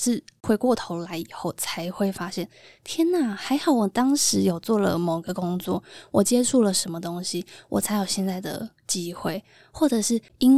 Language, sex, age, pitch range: Chinese, female, 20-39, 185-235 Hz